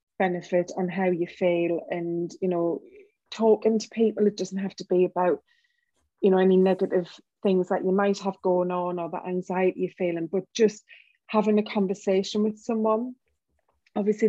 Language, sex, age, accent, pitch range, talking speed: English, female, 30-49, British, 180-210 Hz, 170 wpm